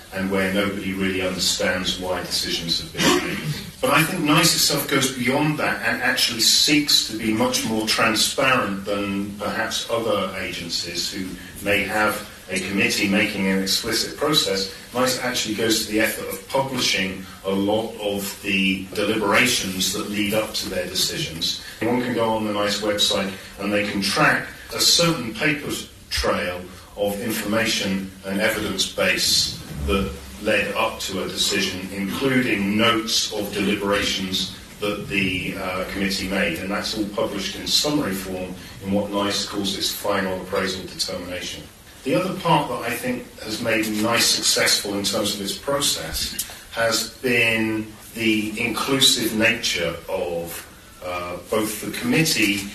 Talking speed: 150 wpm